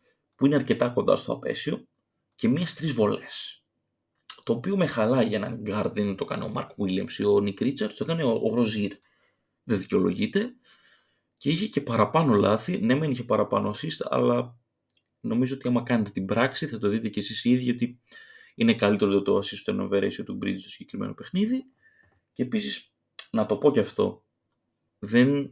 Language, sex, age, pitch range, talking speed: Greek, male, 30-49, 105-140 Hz, 175 wpm